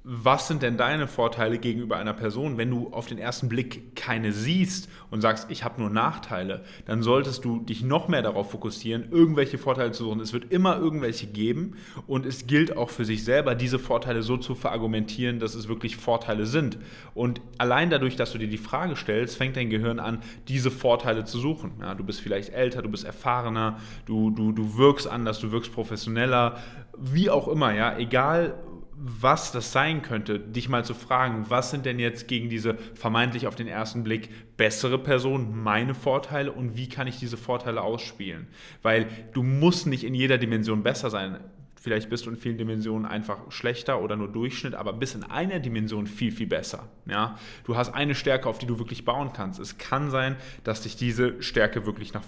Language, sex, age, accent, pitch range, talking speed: German, male, 10-29, German, 110-130 Hz, 195 wpm